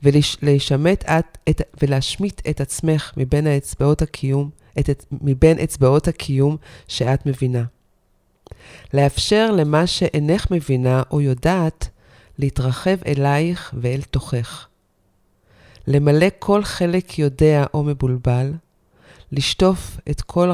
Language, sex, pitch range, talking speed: Hebrew, female, 125-150 Hz, 90 wpm